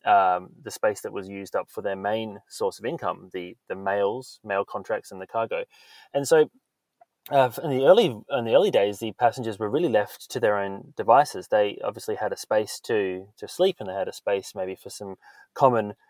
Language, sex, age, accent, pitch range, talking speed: English, male, 20-39, Australian, 95-130 Hz, 215 wpm